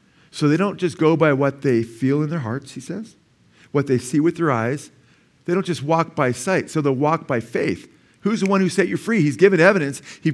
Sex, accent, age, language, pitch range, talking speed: male, American, 50-69, English, 120-165 Hz, 245 wpm